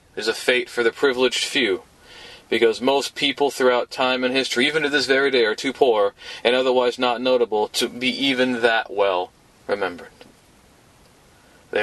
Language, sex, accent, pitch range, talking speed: English, male, American, 115-145 Hz, 165 wpm